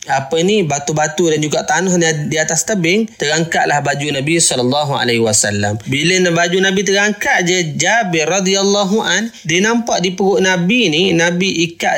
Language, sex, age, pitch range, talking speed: Malay, male, 20-39, 135-185 Hz, 150 wpm